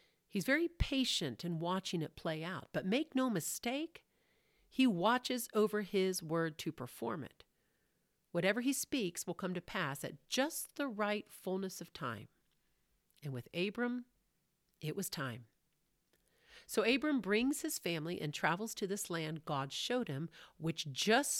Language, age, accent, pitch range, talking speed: English, 40-59, American, 155-225 Hz, 155 wpm